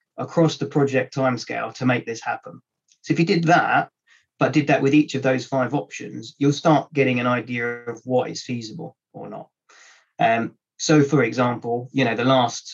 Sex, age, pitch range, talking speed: male, 30-49, 125-155 Hz, 195 wpm